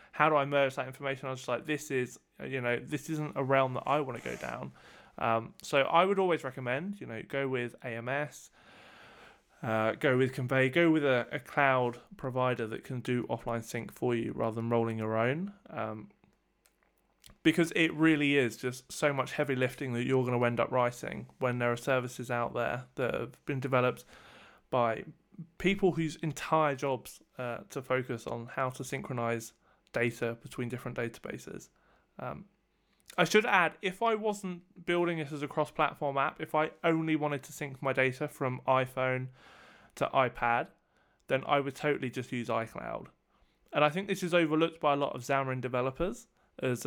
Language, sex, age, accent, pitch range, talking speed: English, male, 20-39, British, 125-160 Hz, 185 wpm